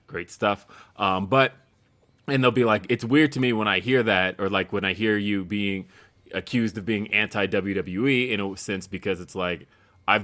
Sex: male